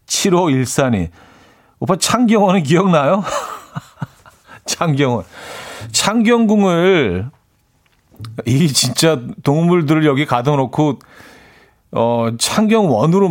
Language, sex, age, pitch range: Korean, male, 40-59, 115-165 Hz